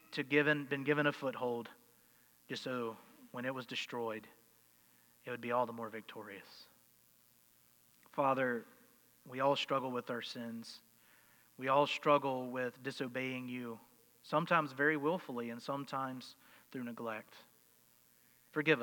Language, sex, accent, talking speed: English, male, American, 125 wpm